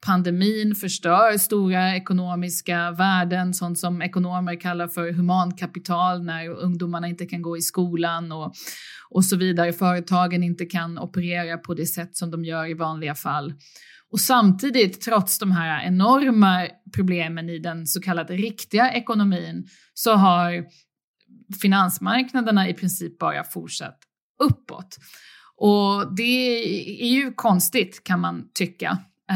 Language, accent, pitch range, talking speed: Swedish, native, 170-205 Hz, 130 wpm